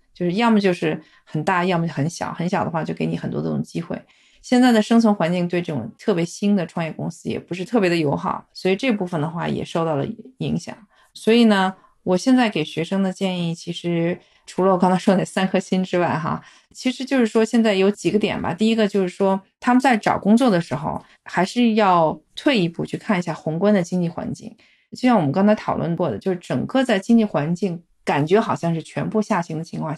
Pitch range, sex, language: 170-220 Hz, female, Chinese